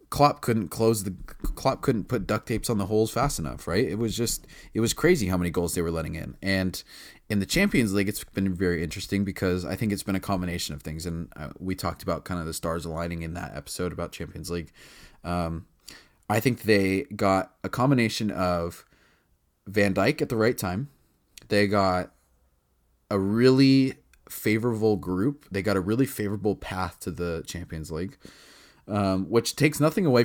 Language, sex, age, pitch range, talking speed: English, male, 20-39, 90-115 Hz, 190 wpm